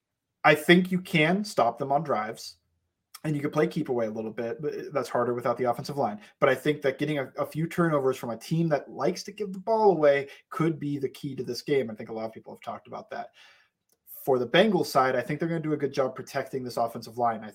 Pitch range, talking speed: 120-150 Hz, 265 wpm